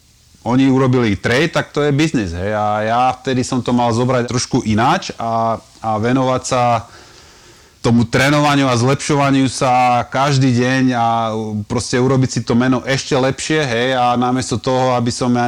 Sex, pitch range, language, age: male, 105-130 Hz, Slovak, 30-49